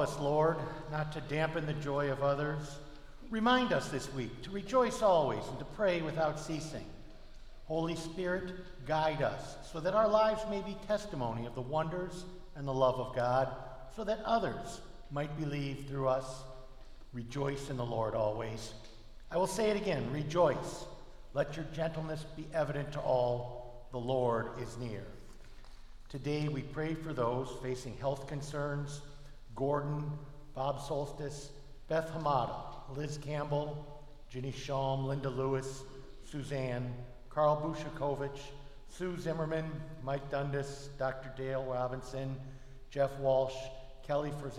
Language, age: English, 50-69